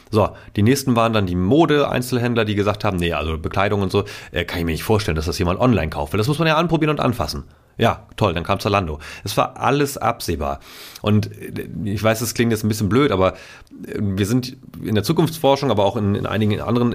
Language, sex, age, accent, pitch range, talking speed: German, male, 30-49, German, 95-120 Hz, 225 wpm